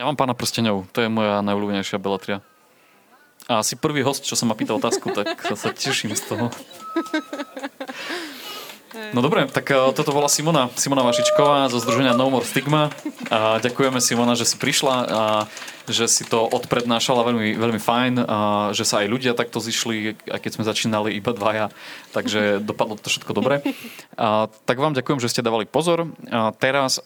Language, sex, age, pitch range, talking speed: Slovak, male, 20-39, 110-140 Hz, 175 wpm